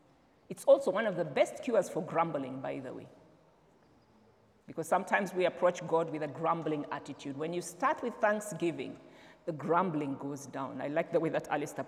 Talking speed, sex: 180 wpm, female